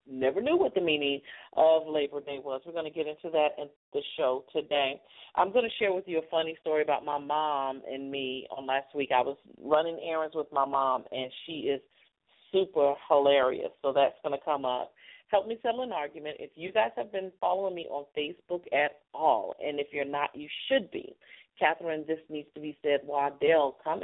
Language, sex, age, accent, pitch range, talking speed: English, female, 40-59, American, 145-185 Hz, 210 wpm